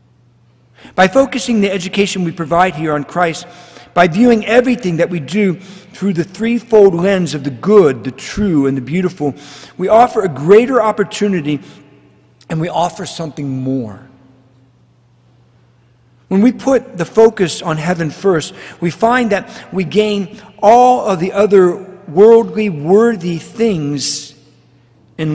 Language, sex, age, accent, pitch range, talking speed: English, male, 50-69, American, 140-200 Hz, 135 wpm